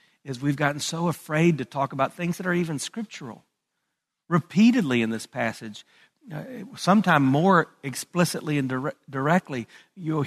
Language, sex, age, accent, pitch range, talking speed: English, male, 50-69, American, 125-170 Hz, 140 wpm